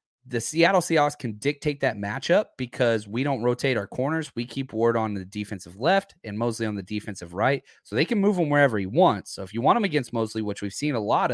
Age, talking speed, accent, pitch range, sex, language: 30-49, 245 wpm, American, 110-160 Hz, male, English